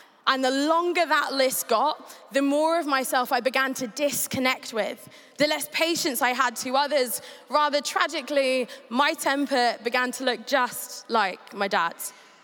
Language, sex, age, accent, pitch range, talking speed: English, female, 20-39, British, 235-290 Hz, 160 wpm